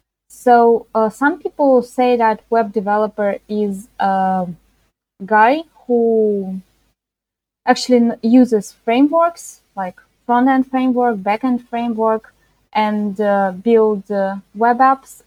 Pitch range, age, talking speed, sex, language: 195-235 Hz, 20-39, 115 wpm, female, English